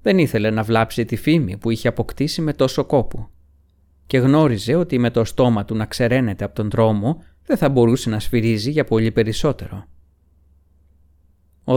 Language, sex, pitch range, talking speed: Greek, male, 95-140 Hz, 170 wpm